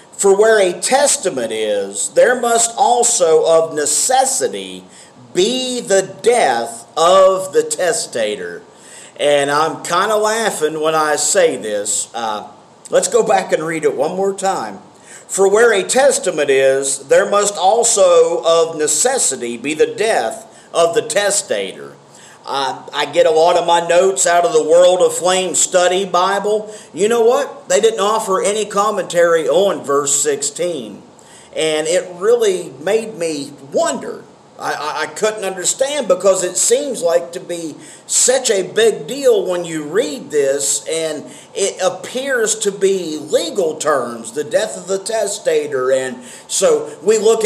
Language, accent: English, American